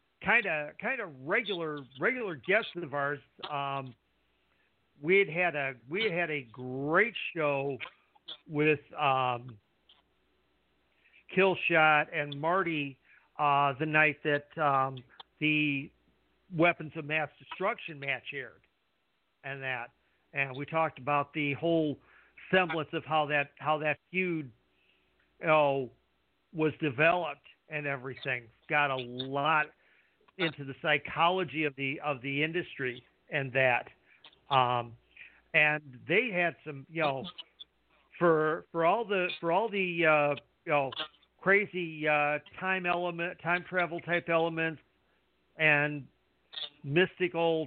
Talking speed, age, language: 125 wpm, 50-69, English